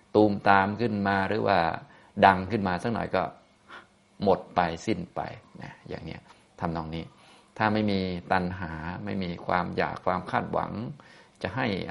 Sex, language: male, Thai